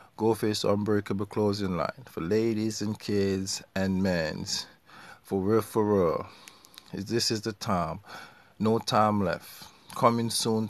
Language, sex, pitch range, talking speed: English, male, 95-115 Hz, 135 wpm